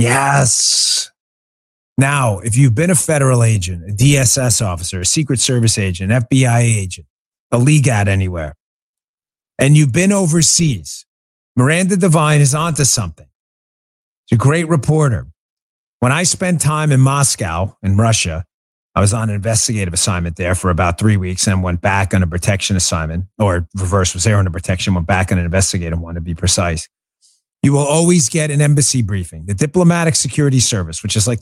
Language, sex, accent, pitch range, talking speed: English, male, American, 100-145 Hz, 175 wpm